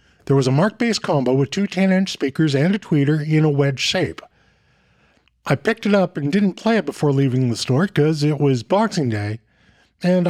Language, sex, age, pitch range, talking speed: English, male, 50-69, 135-180 Hz, 200 wpm